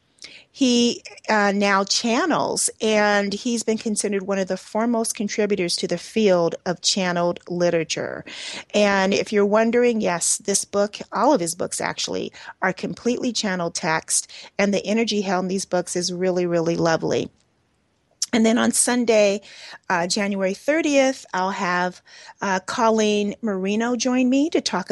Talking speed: 150 wpm